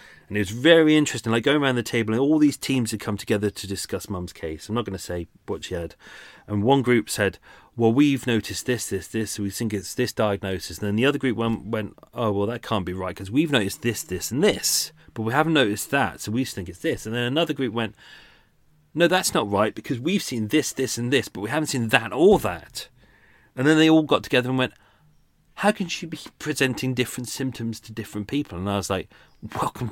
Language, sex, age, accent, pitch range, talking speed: English, male, 30-49, British, 100-135 Hz, 240 wpm